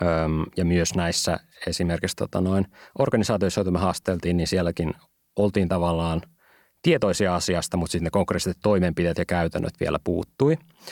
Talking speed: 135 wpm